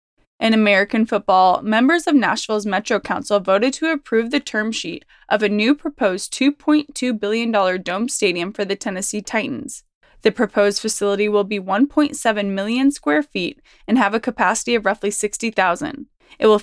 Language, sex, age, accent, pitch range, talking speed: English, female, 20-39, American, 205-255 Hz, 160 wpm